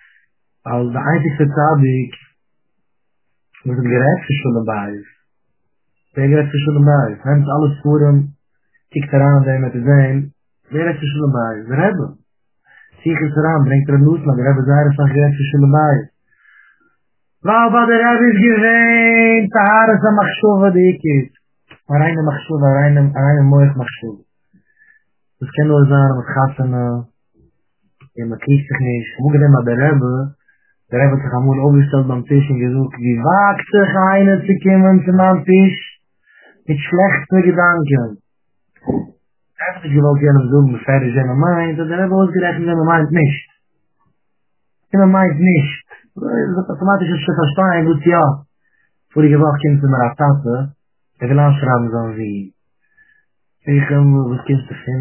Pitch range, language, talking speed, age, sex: 135-175 Hz, English, 120 wpm, 20-39, male